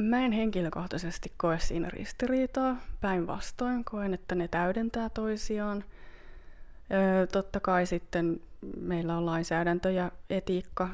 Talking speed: 110 wpm